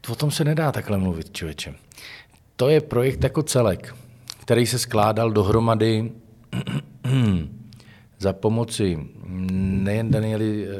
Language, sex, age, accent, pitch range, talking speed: Czech, male, 40-59, native, 100-115 Hz, 110 wpm